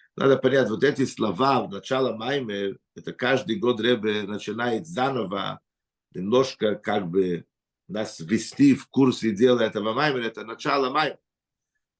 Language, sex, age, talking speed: Russian, male, 50-69, 135 wpm